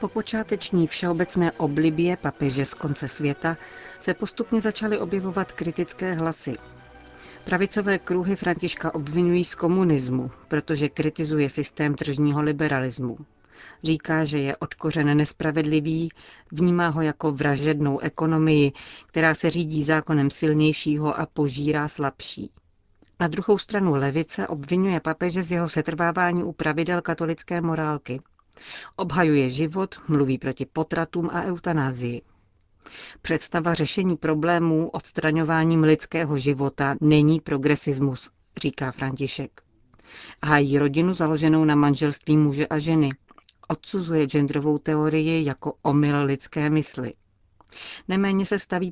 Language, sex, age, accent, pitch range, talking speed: Czech, female, 40-59, native, 145-170 Hz, 110 wpm